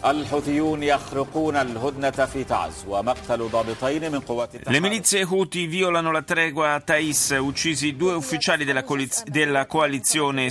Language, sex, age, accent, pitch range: Italian, male, 40-59, native, 110-155 Hz